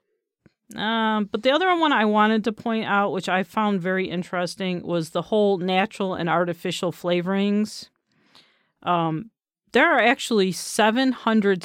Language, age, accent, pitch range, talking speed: English, 40-59, American, 175-220 Hz, 140 wpm